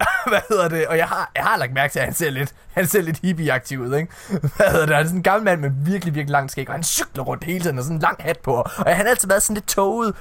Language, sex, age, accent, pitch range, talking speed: Danish, male, 20-39, native, 140-200 Hz, 315 wpm